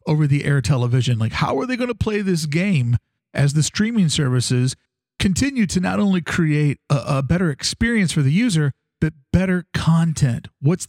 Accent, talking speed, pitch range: American, 180 wpm, 140-185 Hz